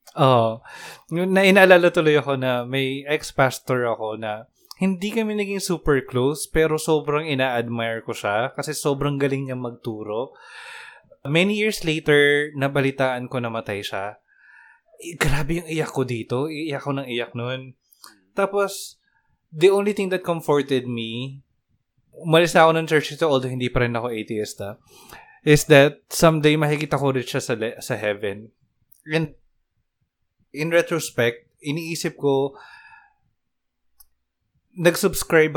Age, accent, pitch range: 20-39, native, 120-155 Hz